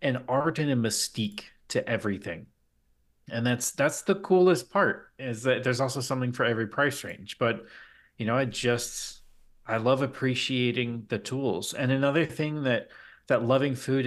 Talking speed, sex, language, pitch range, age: 165 wpm, male, English, 115-135 Hz, 30-49